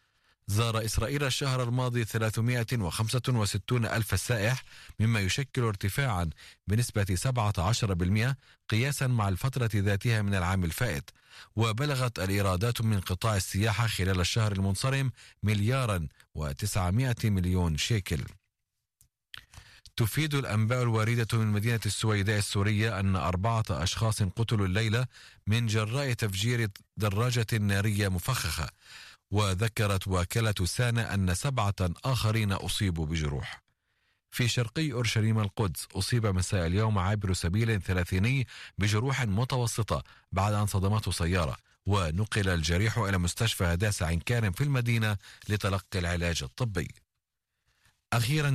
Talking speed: 105 wpm